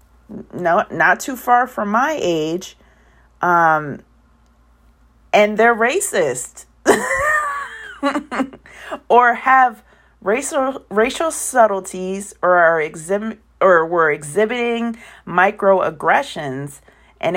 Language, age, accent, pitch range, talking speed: English, 30-49, American, 155-205 Hz, 85 wpm